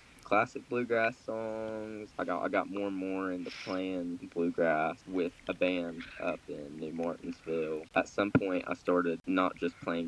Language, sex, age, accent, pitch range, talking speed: English, male, 10-29, American, 85-110 Hz, 165 wpm